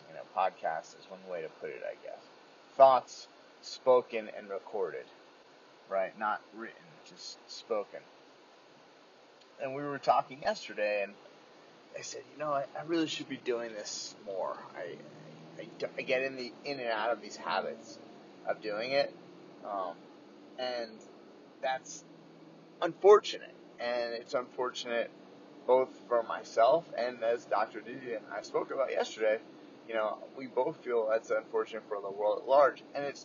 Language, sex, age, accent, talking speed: English, male, 30-49, American, 150 wpm